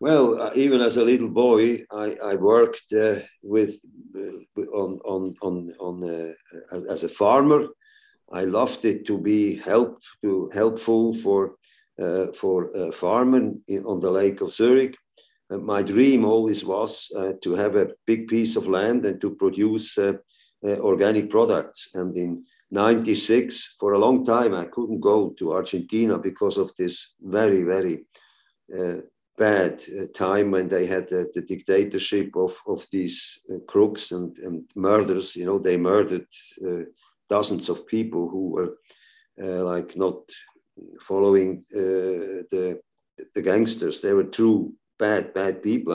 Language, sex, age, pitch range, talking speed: English, male, 50-69, 95-120 Hz, 150 wpm